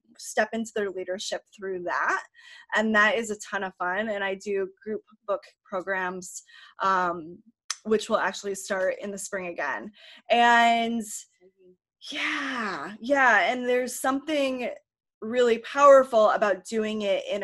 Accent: American